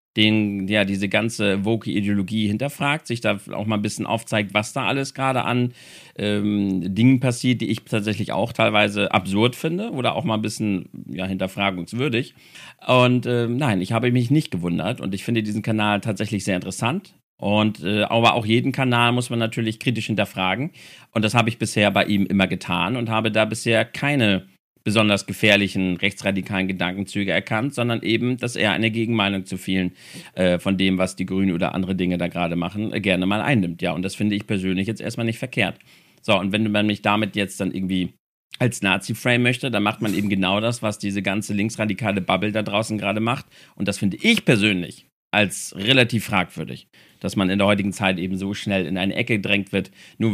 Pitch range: 100-125 Hz